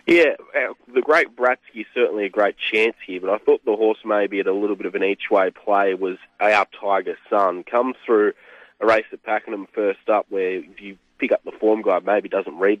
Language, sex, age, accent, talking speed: English, male, 20-39, Australian, 215 wpm